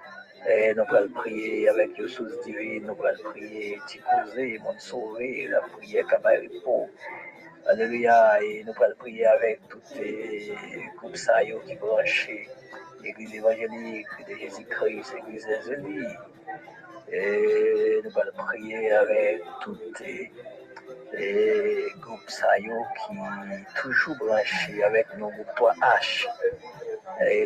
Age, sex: 50-69, male